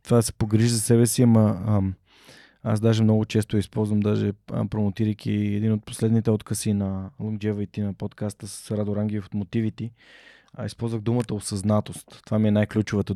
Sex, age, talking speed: male, 20-39, 170 wpm